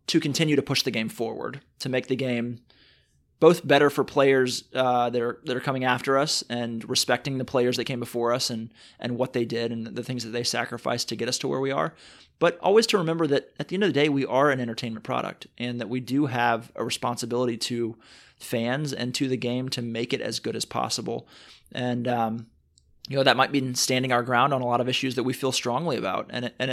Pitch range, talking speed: 120-135 Hz, 240 wpm